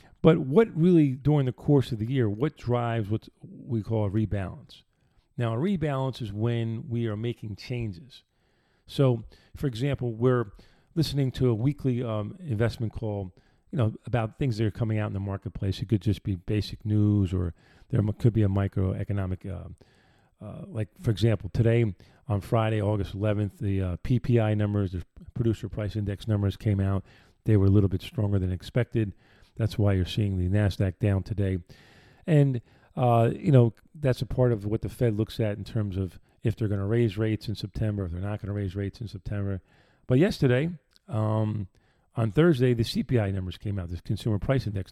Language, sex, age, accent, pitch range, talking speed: English, male, 40-59, American, 100-125 Hz, 190 wpm